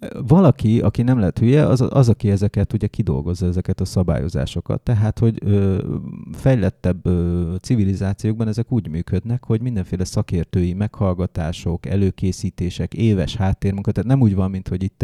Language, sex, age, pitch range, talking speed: Hungarian, male, 30-49, 95-115 Hz, 150 wpm